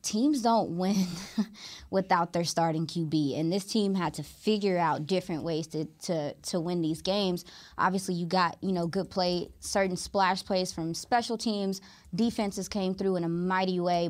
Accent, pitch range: American, 170-210 Hz